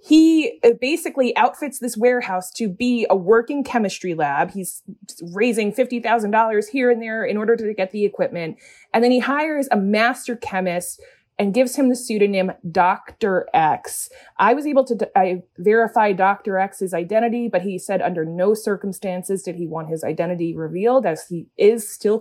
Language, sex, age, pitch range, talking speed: English, female, 20-39, 185-250 Hz, 165 wpm